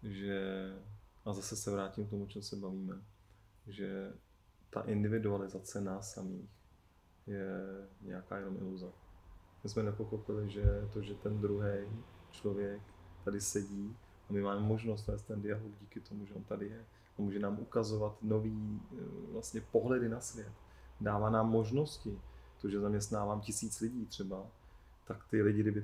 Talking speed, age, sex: 150 wpm, 20-39, male